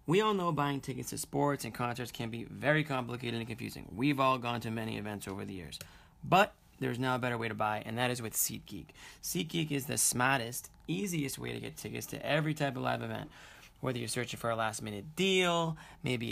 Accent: American